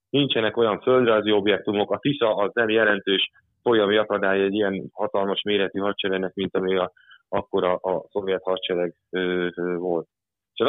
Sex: male